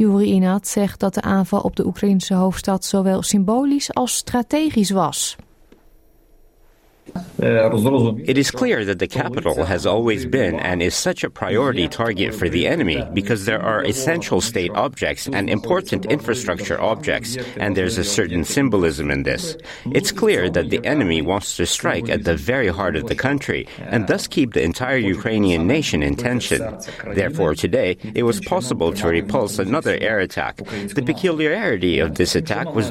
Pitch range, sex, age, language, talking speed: 125-210 Hz, male, 50-69, Dutch, 165 wpm